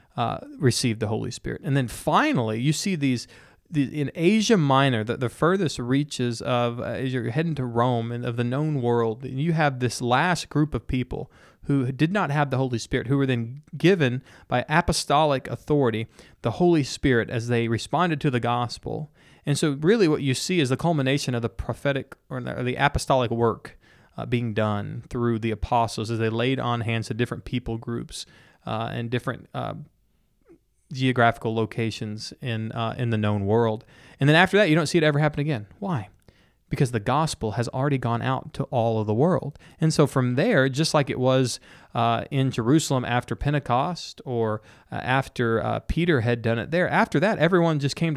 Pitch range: 120-150 Hz